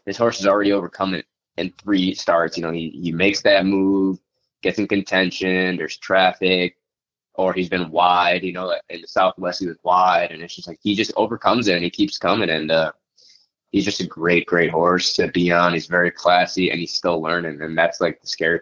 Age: 20-39